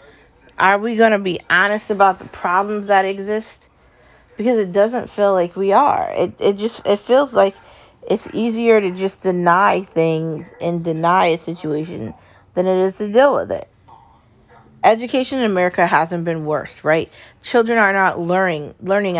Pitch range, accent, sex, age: 170-200 Hz, American, female, 40-59